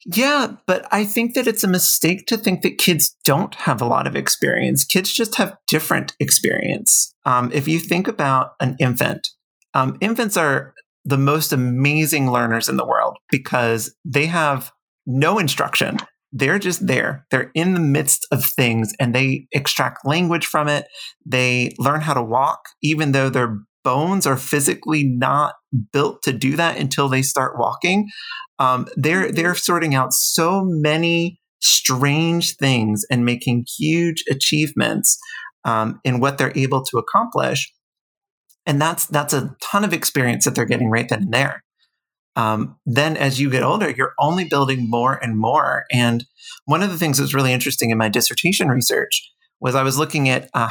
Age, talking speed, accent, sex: 30-49, 170 wpm, American, male